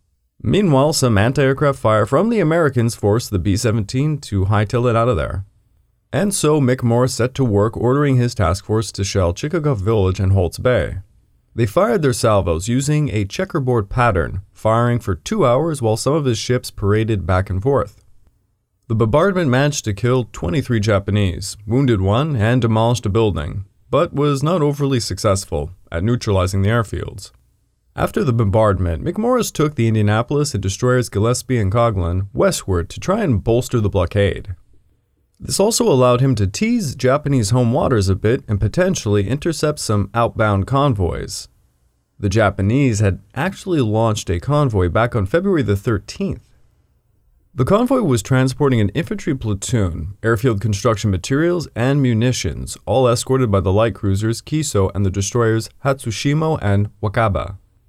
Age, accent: 30-49, American